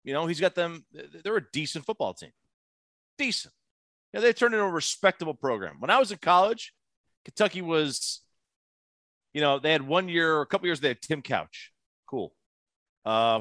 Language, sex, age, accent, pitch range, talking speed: English, male, 30-49, American, 105-170 Hz, 195 wpm